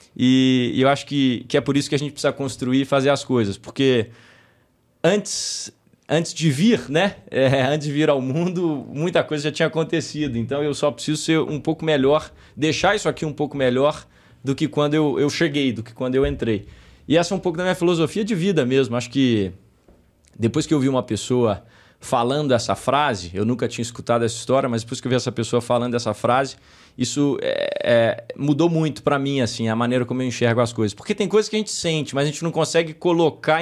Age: 20-39